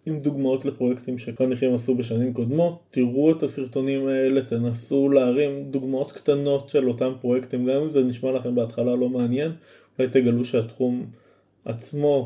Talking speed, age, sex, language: 145 wpm, 20-39, male, Hebrew